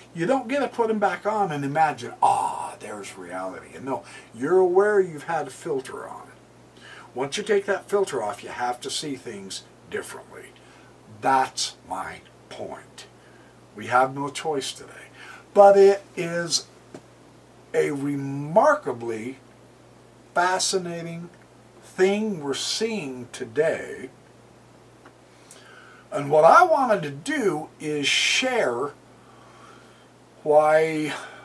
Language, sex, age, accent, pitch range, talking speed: English, male, 60-79, American, 135-205 Hz, 115 wpm